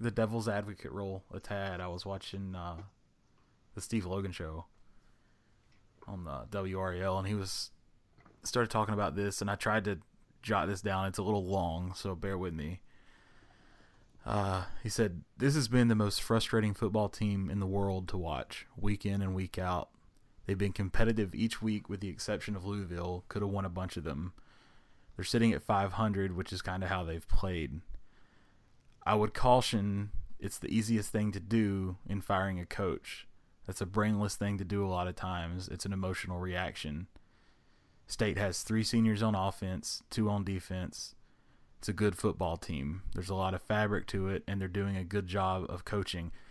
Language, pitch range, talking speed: English, 95-105 Hz, 185 wpm